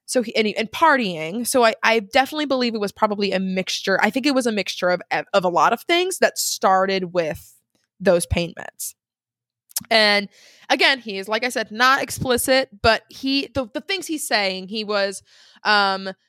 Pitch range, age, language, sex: 205-260 Hz, 20-39, English, female